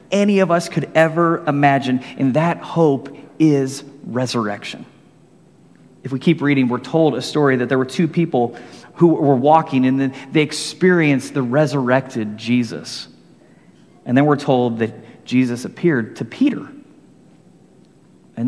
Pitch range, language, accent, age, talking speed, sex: 130-175 Hz, English, American, 30-49, 145 wpm, male